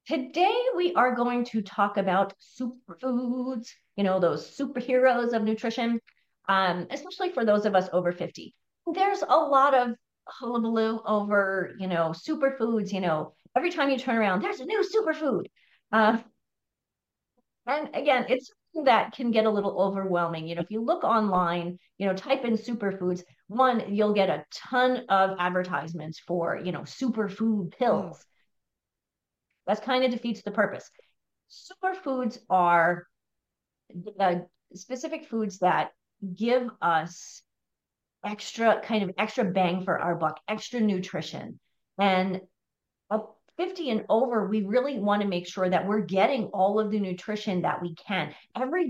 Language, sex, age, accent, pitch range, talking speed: English, female, 40-59, American, 185-245 Hz, 150 wpm